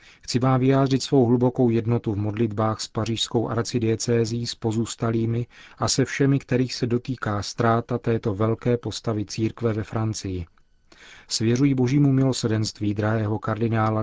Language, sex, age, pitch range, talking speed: Czech, male, 40-59, 105-120 Hz, 135 wpm